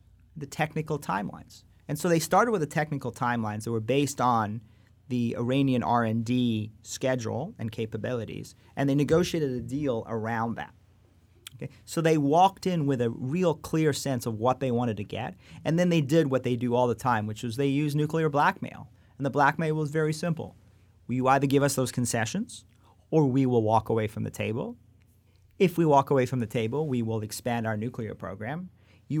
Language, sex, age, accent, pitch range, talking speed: English, male, 30-49, American, 110-140 Hz, 195 wpm